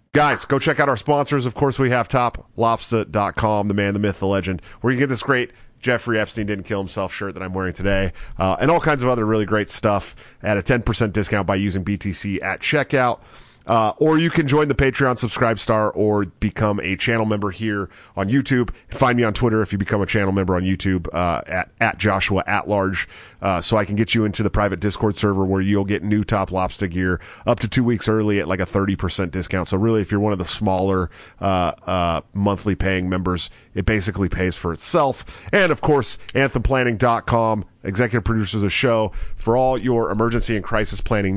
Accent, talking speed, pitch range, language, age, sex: American, 215 wpm, 100-120 Hz, English, 30-49, male